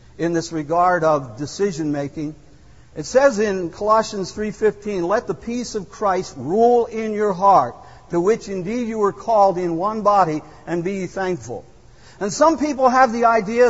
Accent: American